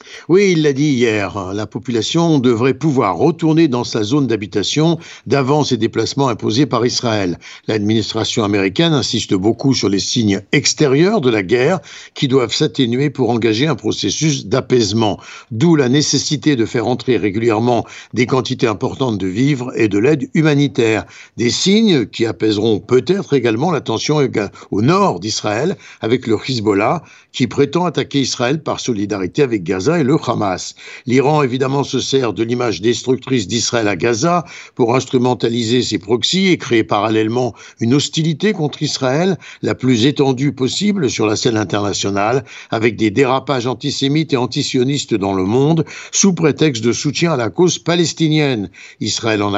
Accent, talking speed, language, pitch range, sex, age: French, 155 wpm, French, 115-150 Hz, male, 60-79